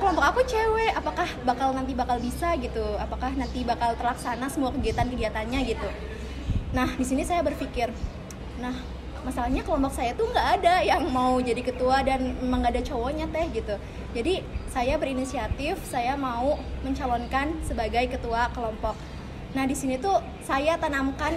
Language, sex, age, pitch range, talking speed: Indonesian, female, 20-39, 255-315 Hz, 150 wpm